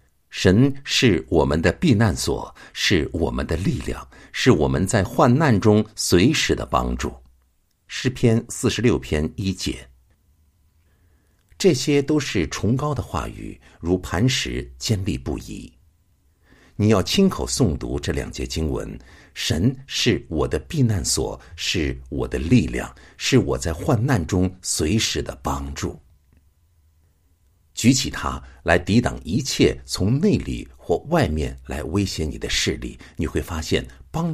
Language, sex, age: Chinese, male, 60-79